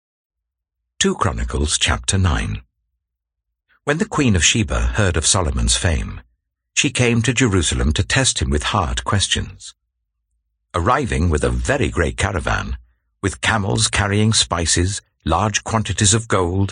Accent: British